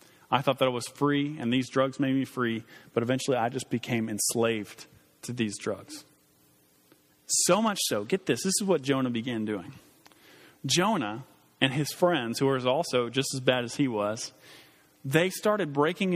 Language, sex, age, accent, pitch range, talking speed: English, male, 40-59, American, 125-165 Hz, 180 wpm